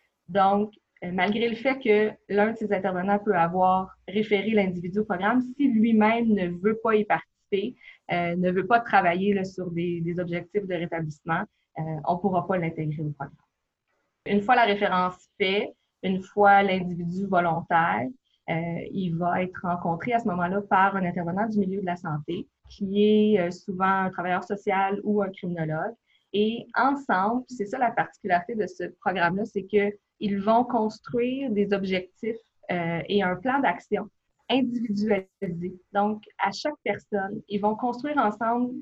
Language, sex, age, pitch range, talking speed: French, female, 20-39, 180-215 Hz, 165 wpm